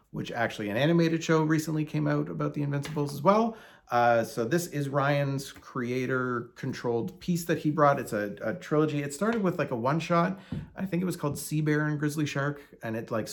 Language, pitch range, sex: English, 130-160 Hz, male